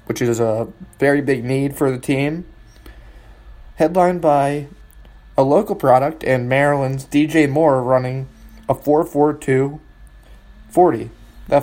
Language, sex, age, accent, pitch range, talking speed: English, male, 20-39, American, 120-145 Hz, 120 wpm